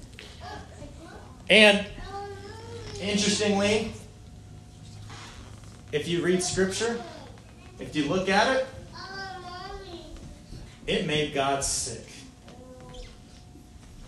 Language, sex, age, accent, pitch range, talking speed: English, male, 30-49, American, 105-175 Hz, 65 wpm